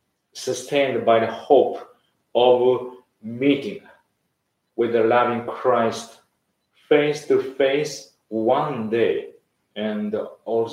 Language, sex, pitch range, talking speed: English, male, 115-185 Hz, 80 wpm